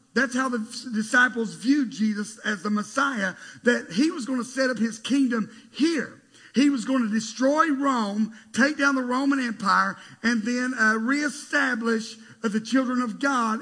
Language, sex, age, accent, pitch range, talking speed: English, male, 50-69, American, 165-240 Hz, 170 wpm